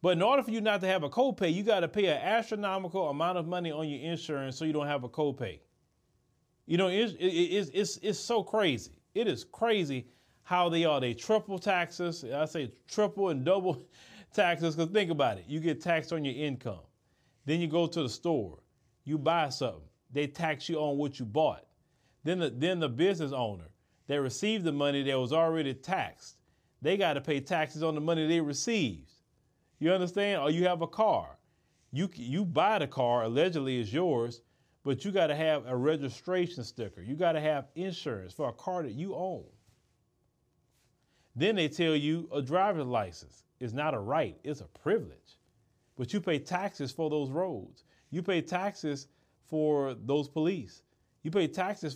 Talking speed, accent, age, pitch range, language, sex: 190 wpm, American, 30-49, 140-185 Hz, English, male